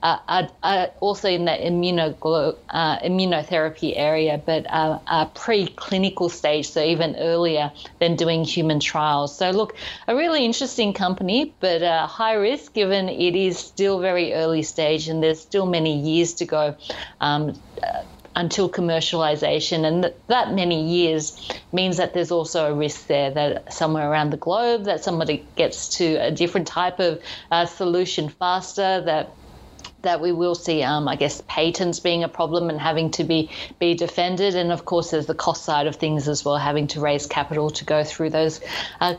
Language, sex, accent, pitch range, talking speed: English, female, Australian, 155-185 Hz, 180 wpm